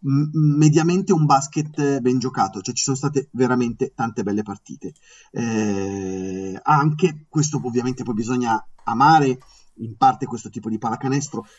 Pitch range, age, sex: 120-155 Hz, 30-49, male